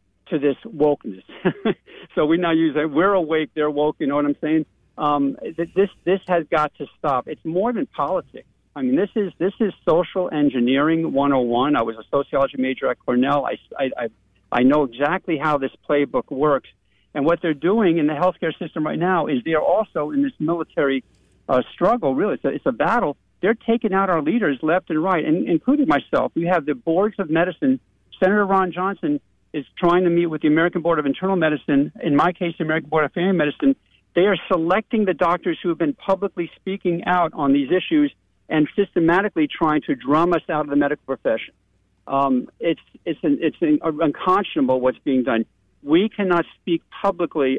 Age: 50-69